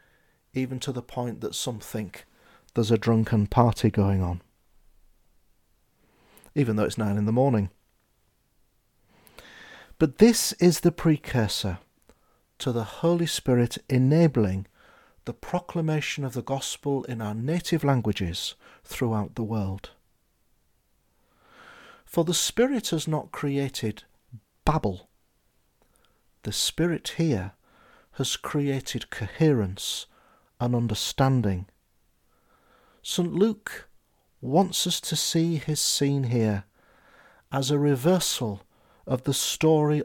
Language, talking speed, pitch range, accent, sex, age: English, 105 wpm, 105-150 Hz, British, male, 40-59